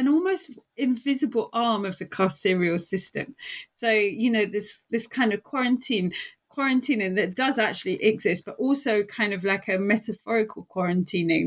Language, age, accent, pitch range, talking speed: English, 30-49, British, 185-245 Hz, 150 wpm